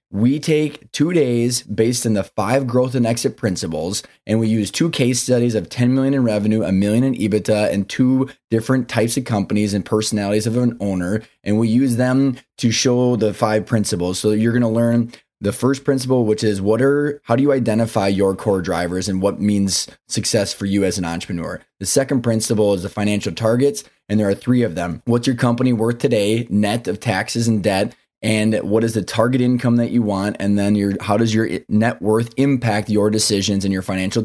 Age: 20-39